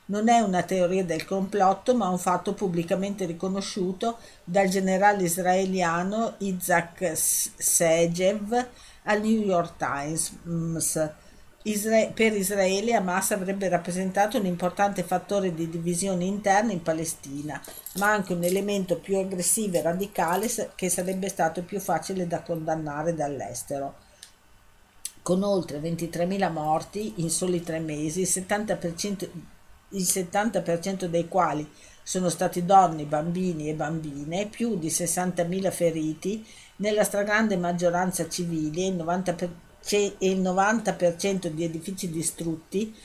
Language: Italian